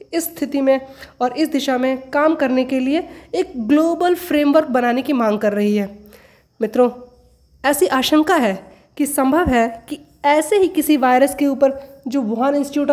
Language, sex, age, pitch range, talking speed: Hindi, female, 20-39, 235-290 Hz, 170 wpm